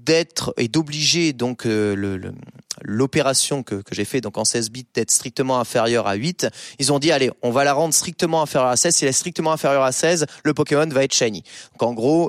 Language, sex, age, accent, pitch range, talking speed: French, male, 20-39, French, 120-165 Hz, 235 wpm